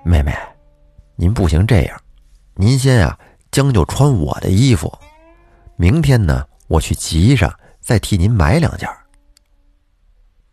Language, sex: Chinese, male